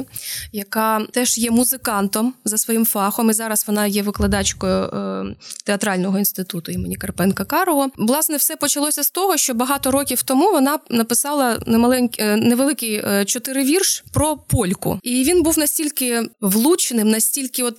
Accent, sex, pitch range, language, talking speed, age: native, female, 215-280 Hz, Ukrainian, 130 wpm, 20-39